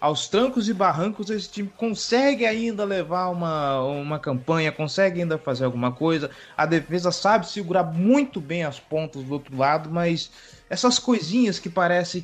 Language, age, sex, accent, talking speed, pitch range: Portuguese, 20-39, male, Brazilian, 160 wpm, 140-190 Hz